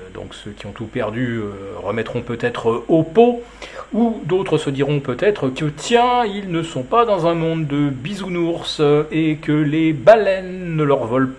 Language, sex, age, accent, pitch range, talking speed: French, male, 40-59, French, 120-155 Hz, 180 wpm